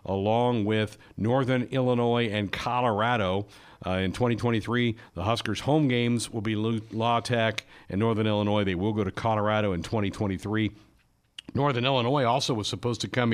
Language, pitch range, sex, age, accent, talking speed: English, 100-125 Hz, male, 60-79, American, 155 wpm